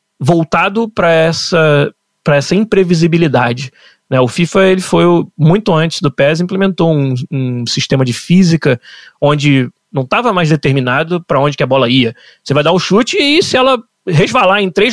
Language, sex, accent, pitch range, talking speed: Portuguese, male, Brazilian, 145-200 Hz, 175 wpm